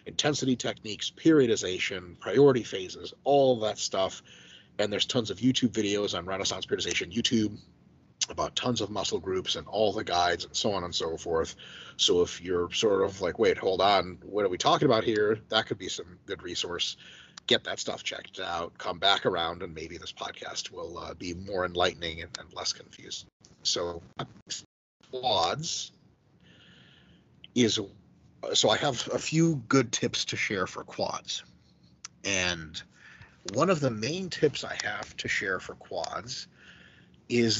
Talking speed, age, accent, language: 165 wpm, 30-49, American, English